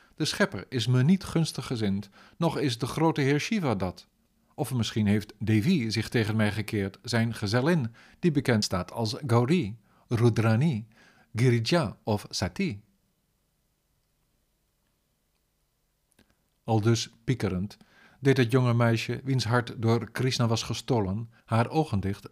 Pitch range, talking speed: 110-130 Hz, 130 wpm